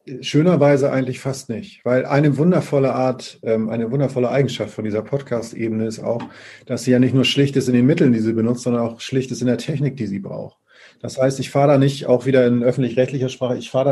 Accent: German